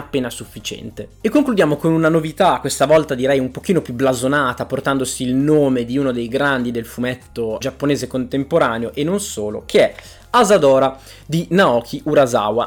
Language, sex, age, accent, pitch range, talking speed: Italian, male, 20-39, native, 125-155 Hz, 160 wpm